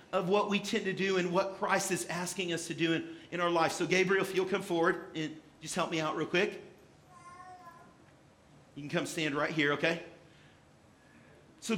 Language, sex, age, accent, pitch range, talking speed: English, male, 40-59, American, 170-215 Hz, 200 wpm